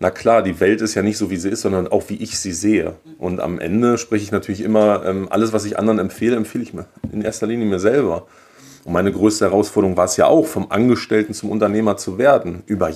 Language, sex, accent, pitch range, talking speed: German, male, German, 95-110 Hz, 240 wpm